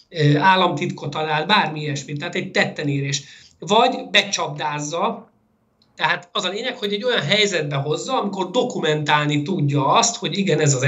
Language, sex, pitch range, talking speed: Hungarian, male, 150-215 Hz, 145 wpm